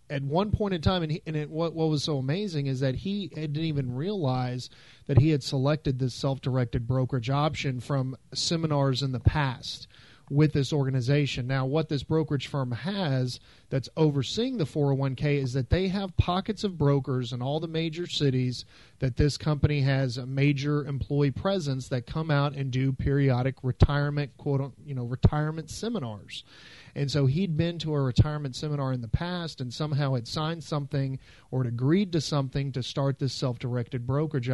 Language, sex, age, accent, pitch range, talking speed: English, male, 40-59, American, 130-155 Hz, 185 wpm